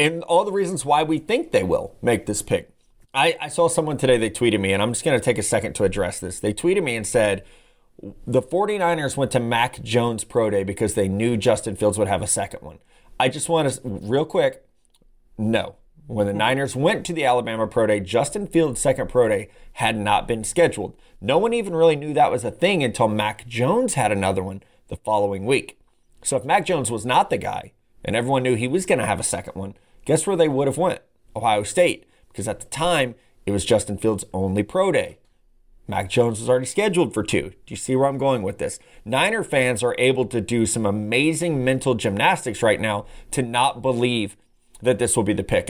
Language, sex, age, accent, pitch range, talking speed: English, male, 30-49, American, 105-150 Hz, 225 wpm